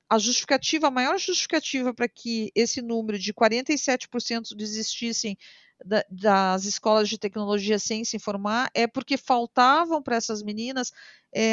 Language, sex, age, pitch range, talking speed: Portuguese, female, 50-69, 215-260 Hz, 140 wpm